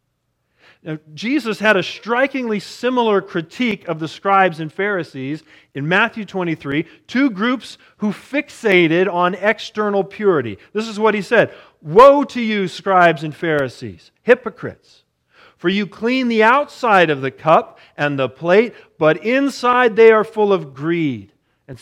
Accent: American